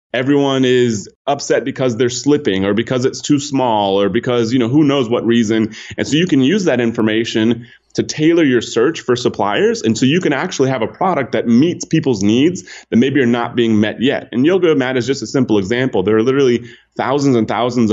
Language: English